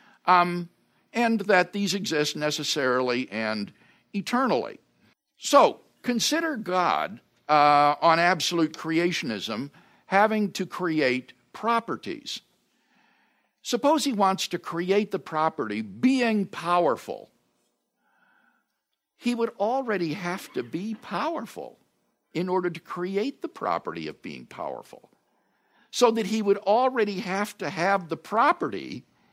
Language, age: English, 60-79